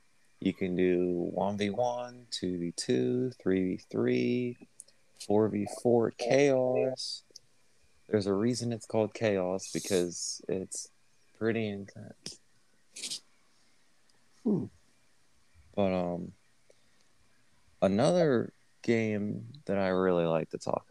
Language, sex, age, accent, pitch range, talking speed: English, male, 20-39, American, 90-110 Hz, 80 wpm